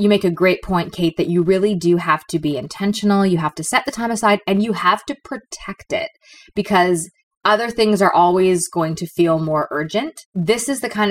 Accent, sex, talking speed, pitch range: American, female, 220 wpm, 165-215 Hz